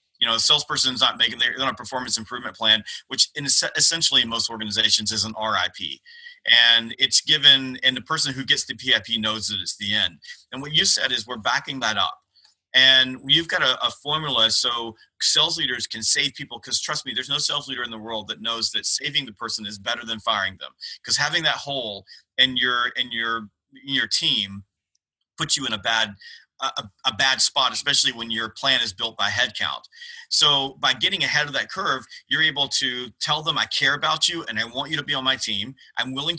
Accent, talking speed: American, 225 wpm